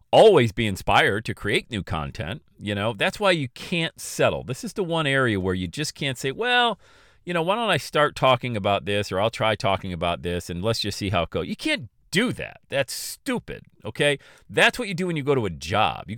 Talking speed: 240 wpm